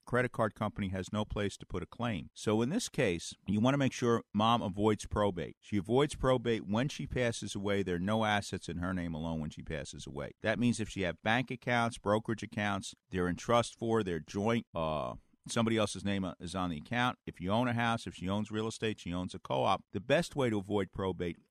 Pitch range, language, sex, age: 90-115 Hz, English, male, 50-69